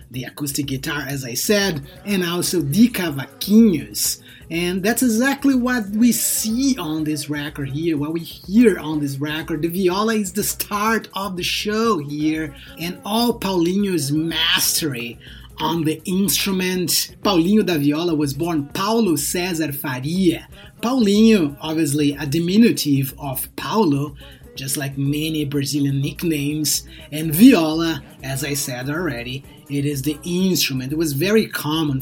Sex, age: male, 30-49